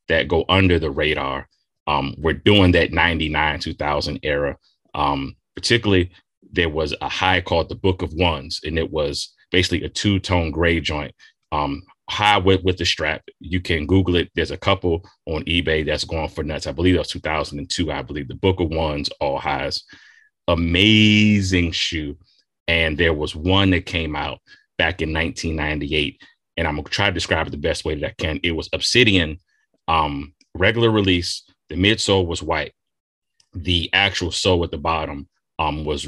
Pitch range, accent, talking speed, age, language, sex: 80-95 Hz, American, 180 wpm, 30-49, English, male